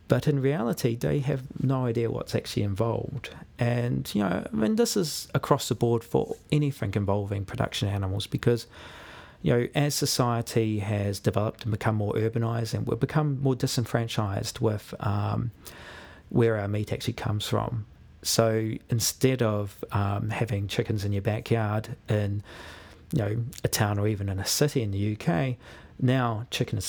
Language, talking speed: English, 165 wpm